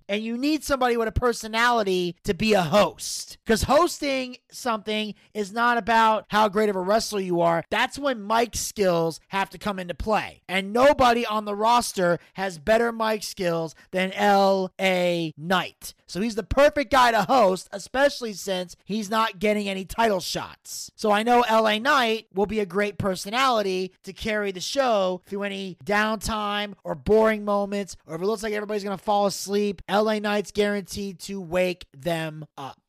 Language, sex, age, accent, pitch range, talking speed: English, male, 30-49, American, 185-230 Hz, 175 wpm